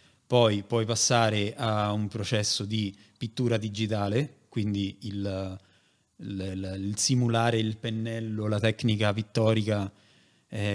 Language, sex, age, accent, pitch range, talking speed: Italian, male, 30-49, native, 105-115 Hz, 115 wpm